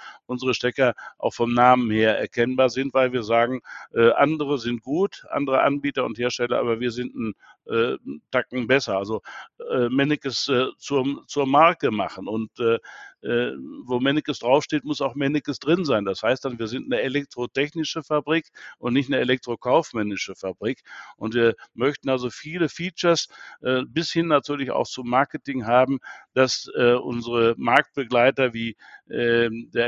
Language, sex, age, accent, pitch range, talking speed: German, male, 60-79, German, 120-145 Hz, 160 wpm